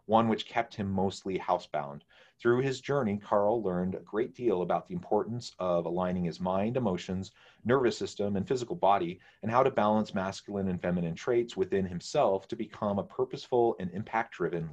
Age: 30-49